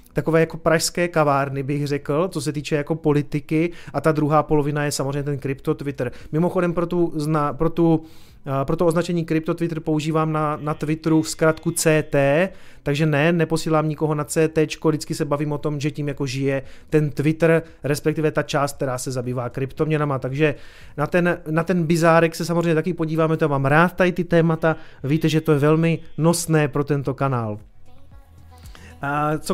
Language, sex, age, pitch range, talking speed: Czech, male, 30-49, 150-170 Hz, 175 wpm